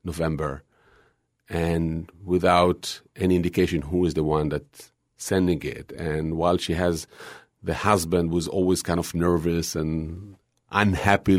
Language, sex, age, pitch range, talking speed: English, male, 40-59, 85-105 Hz, 130 wpm